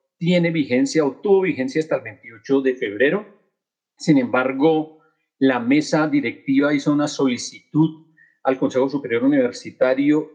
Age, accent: 40-59, Colombian